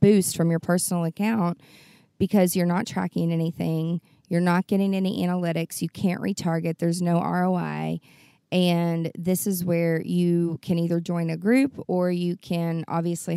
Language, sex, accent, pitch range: English, female, American, 165-185 Hz